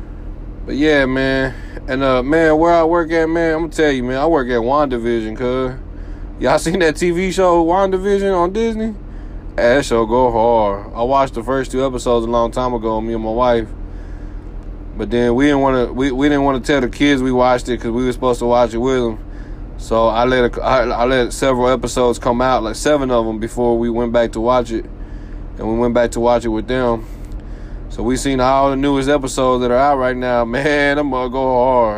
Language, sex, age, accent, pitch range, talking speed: English, male, 20-39, American, 110-140 Hz, 230 wpm